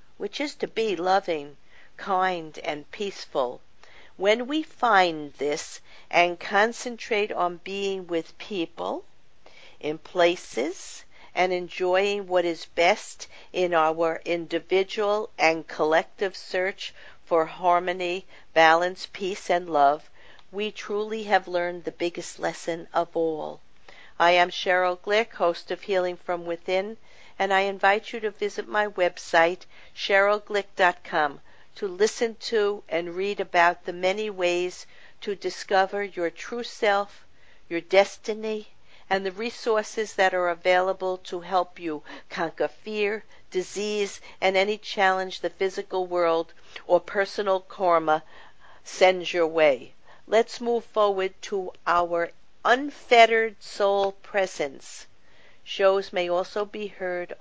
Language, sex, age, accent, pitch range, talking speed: English, female, 50-69, American, 170-205 Hz, 120 wpm